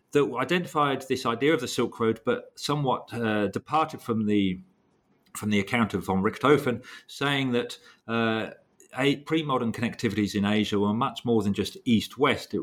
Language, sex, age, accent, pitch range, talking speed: English, male, 40-59, British, 95-120 Hz, 165 wpm